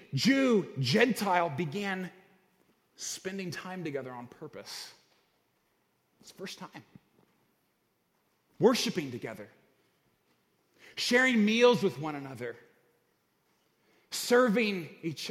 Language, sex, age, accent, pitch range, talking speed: English, male, 30-49, American, 180-245 Hz, 80 wpm